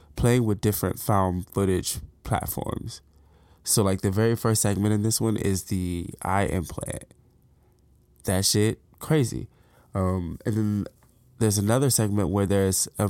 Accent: American